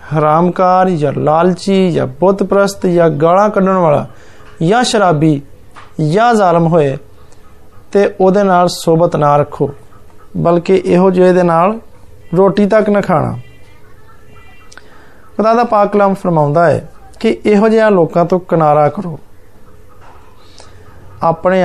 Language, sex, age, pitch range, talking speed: Hindi, male, 30-49, 145-195 Hz, 85 wpm